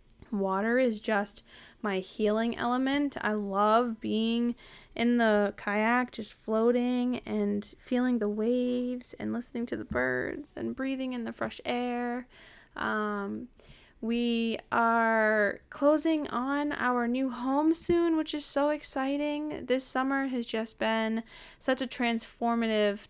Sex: female